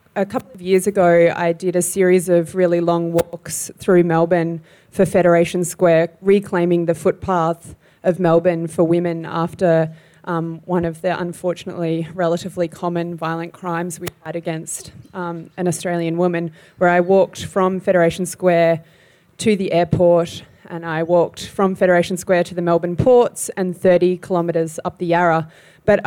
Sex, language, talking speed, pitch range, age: female, English, 155 wpm, 170-190 Hz, 20-39